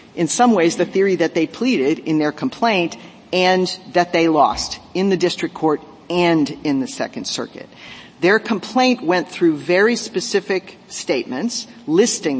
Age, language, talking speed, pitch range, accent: 50-69, English, 155 wpm, 160-205 Hz, American